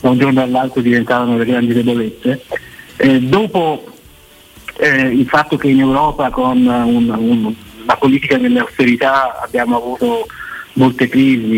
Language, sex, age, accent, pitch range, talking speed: Italian, male, 50-69, native, 120-155 Hz, 125 wpm